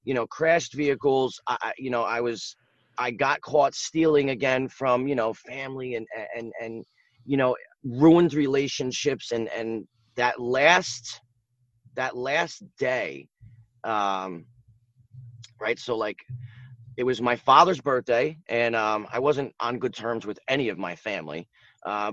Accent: American